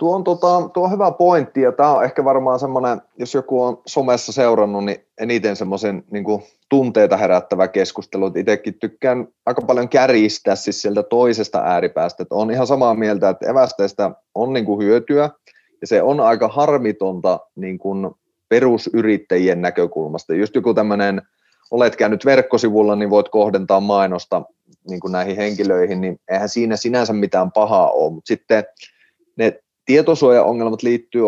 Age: 30-49